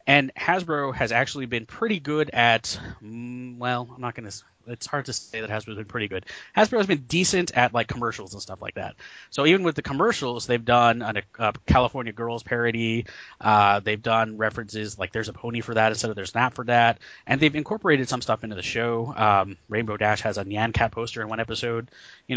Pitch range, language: 110-130 Hz, English